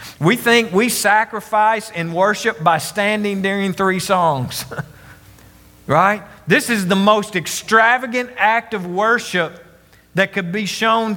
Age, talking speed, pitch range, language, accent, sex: 40-59, 130 wpm, 185-245 Hz, English, American, male